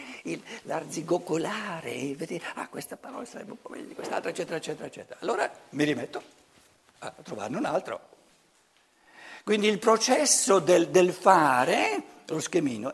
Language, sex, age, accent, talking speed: Italian, male, 60-79, native, 140 wpm